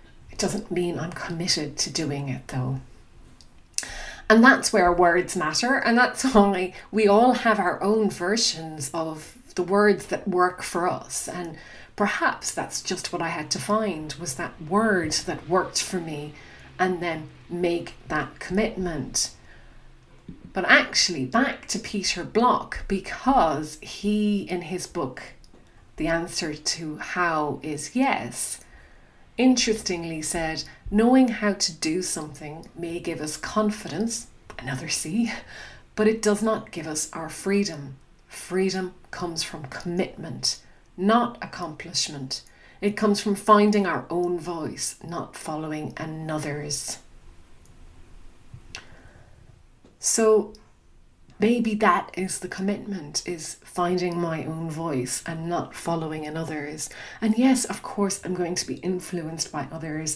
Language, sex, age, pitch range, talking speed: English, female, 30-49, 155-200 Hz, 130 wpm